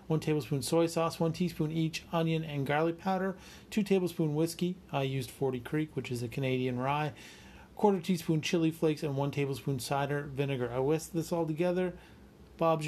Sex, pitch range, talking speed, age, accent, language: male, 125-160 Hz, 180 wpm, 40-59, American, English